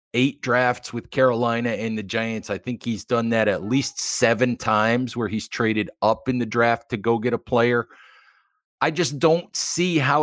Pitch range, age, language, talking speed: 110-130 Hz, 40-59, English, 195 wpm